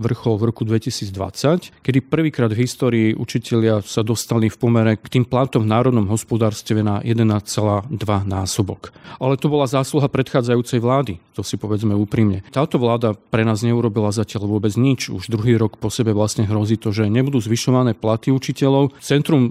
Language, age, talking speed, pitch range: Slovak, 40-59, 165 wpm, 110-130 Hz